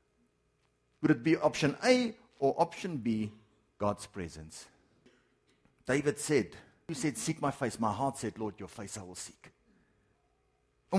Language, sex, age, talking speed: English, male, 50-69, 145 wpm